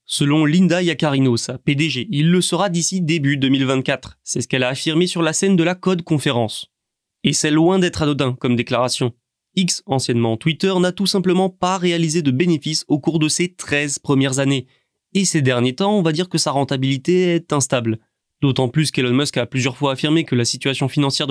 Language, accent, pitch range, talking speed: French, French, 130-170 Hz, 200 wpm